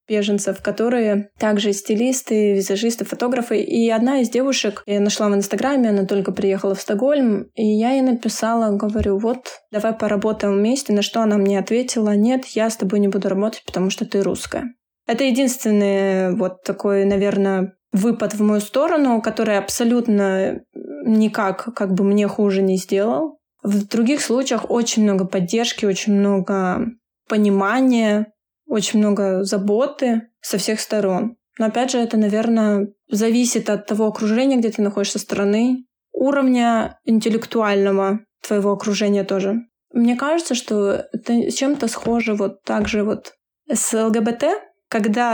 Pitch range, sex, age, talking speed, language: 200-235 Hz, female, 20-39, 145 wpm, Russian